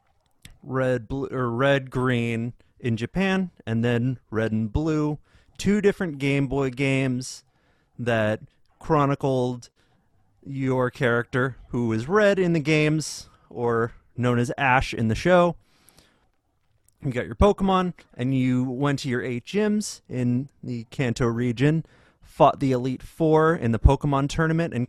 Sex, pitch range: male, 115-145 Hz